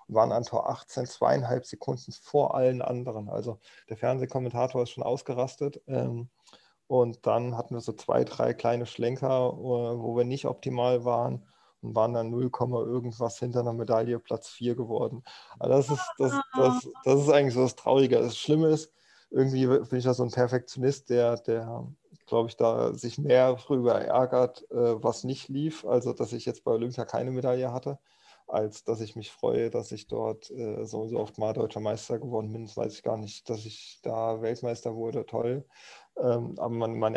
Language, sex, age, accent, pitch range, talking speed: German, male, 30-49, German, 115-130 Hz, 185 wpm